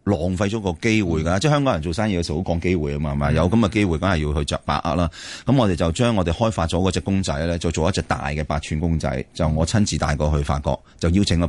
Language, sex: Chinese, male